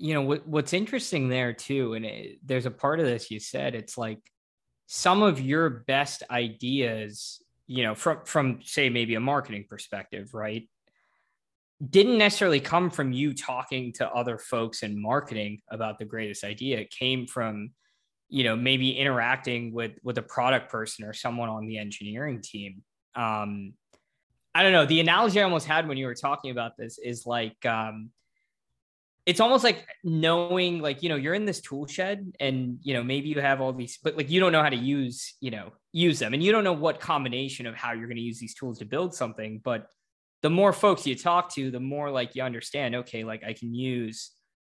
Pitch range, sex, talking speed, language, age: 115-150 Hz, male, 200 wpm, English, 20-39